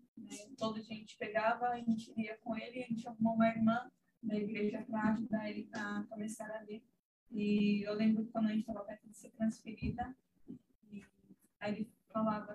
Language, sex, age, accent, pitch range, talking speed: Portuguese, female, 10-29, Brazilian, 215-240 Hz, 180 wpm